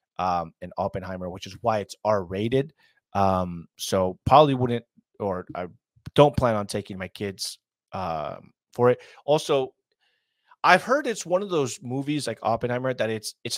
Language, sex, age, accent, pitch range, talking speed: English, male, 30-49, American, 105-155 Hz, 160 wpm